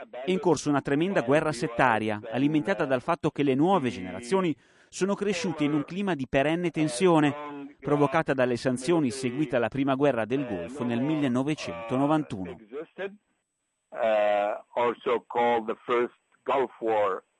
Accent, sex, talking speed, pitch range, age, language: native, male, 115 wpm, 120-155 Hz, 30-49, Italian